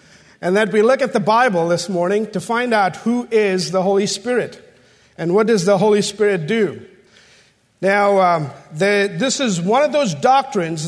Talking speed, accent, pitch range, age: 175 wpm, American, 180-225 Hz, 50-69